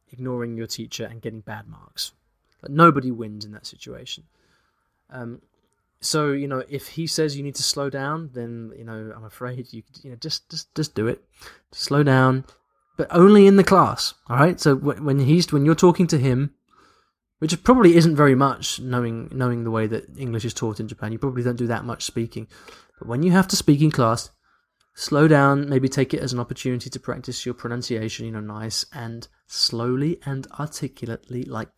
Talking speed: 200 wpm